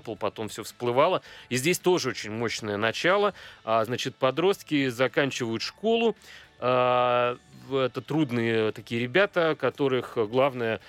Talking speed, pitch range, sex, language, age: 105 wpm, 105-130 Hz, male, Russian, 30-49